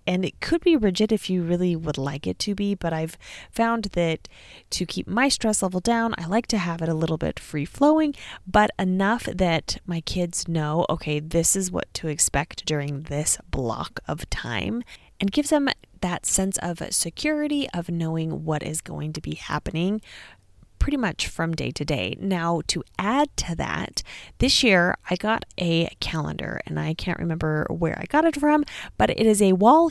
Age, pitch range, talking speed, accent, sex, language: 20-39, 160-215 Hz, 195 wpm, American, female, English